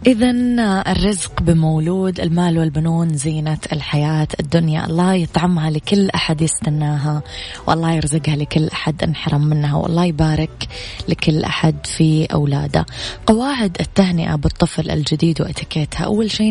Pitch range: 150-175 Hz